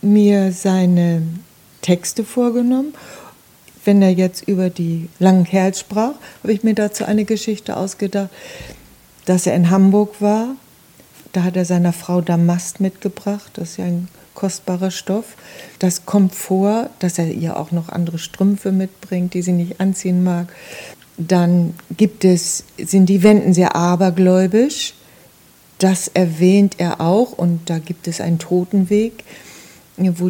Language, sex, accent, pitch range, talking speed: German, female, German, 175-200 Hz, 145 wpm